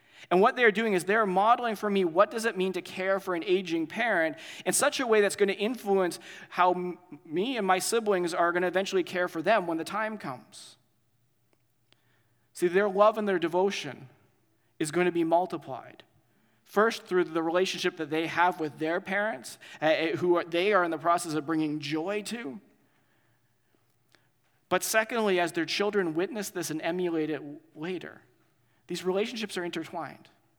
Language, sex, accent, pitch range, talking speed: English, male, American, 155-190 Hz, 175 wpm